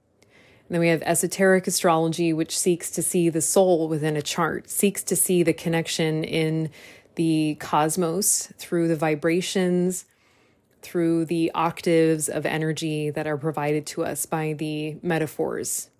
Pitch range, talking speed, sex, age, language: 150-165 Hz, 145 wpm, female, 20-39, English